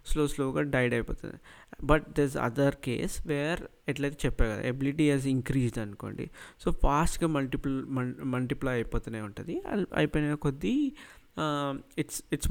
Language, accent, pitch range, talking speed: Telugu, native, 125-150 Hz, 125 wpm